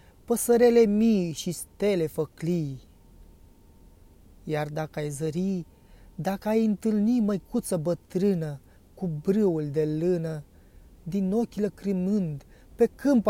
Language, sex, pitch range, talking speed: Romanian, male, 150-200 Hz, 105 wpm